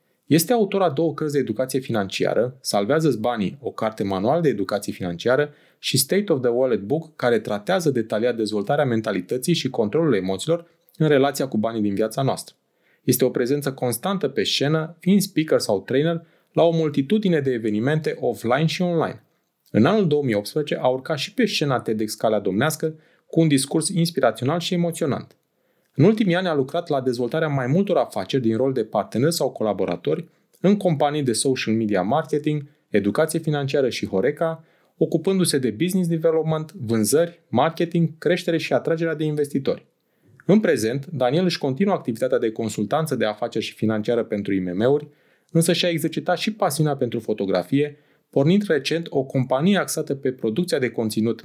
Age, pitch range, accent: 30-49, 120-165 Hz, native